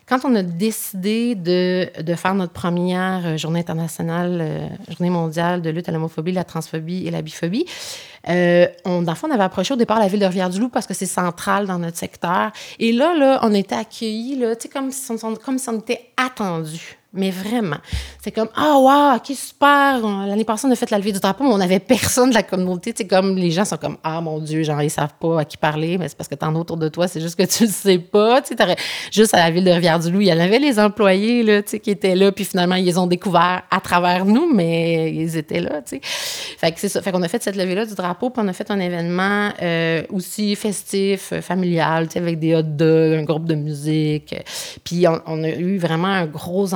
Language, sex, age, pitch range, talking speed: French, female, 30-49, 170-215 Hz, 235 wpm